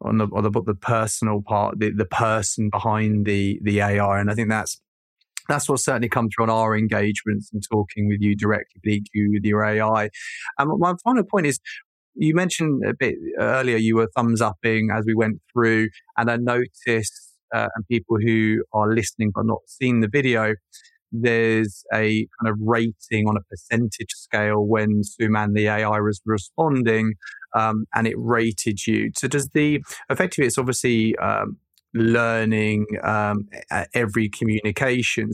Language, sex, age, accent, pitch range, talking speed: English, male, 20-39, British, 105-115 Hz, 165 wpm